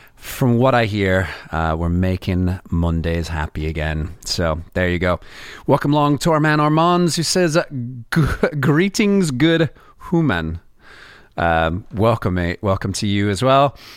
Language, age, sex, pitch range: English, 30-49, male, 95-150 Hz